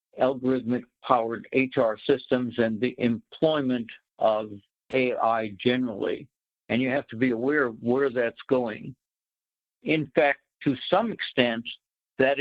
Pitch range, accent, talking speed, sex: 115-130 Hz, American, 125 wpm, male